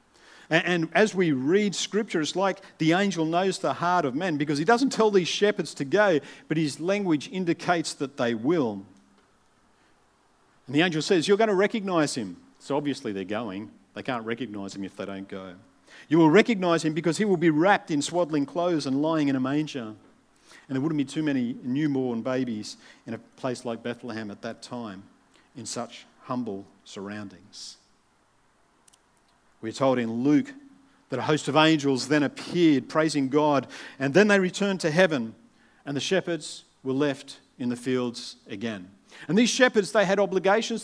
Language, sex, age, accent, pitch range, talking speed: English, male, 50-69, Australian, 135-190 Hz, 180 wpm